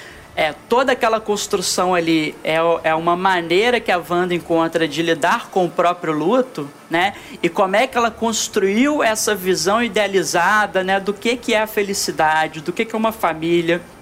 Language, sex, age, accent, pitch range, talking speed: Portuguese, male, 20-39, Brazilian, 170-235 Hz, 180 wpm